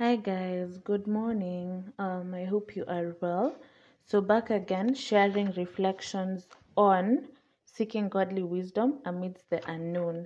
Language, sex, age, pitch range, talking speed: English, female, 20-39, 175-205 Hz, 130 wpm